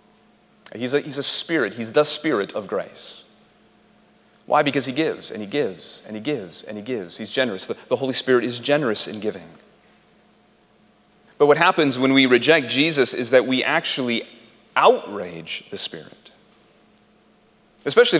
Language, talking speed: English, 160 wpm